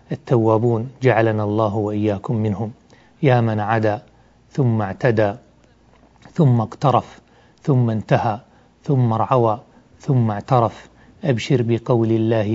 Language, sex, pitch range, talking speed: Arabic, male, 110-130 Hz, 100 wpm